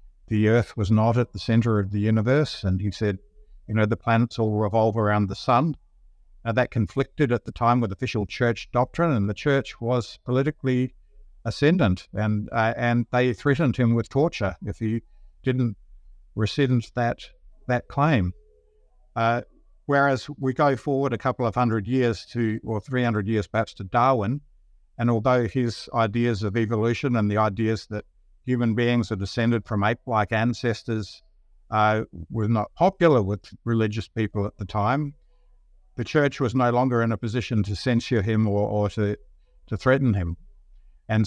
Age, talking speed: 60-79, 165 wpm